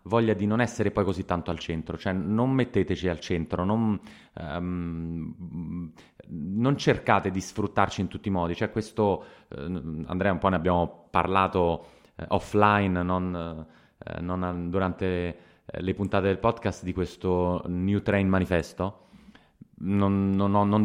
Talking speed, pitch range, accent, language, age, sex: 130 wpm, 90-105 Hz, native, Italian, 20-39, male